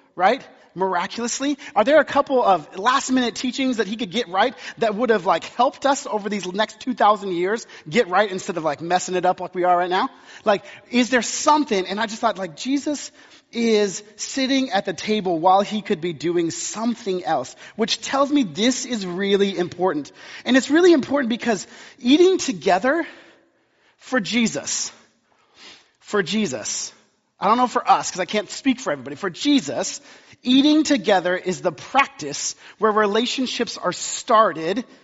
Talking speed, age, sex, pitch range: 170 wpm, 30-49, male, 185-255 Hz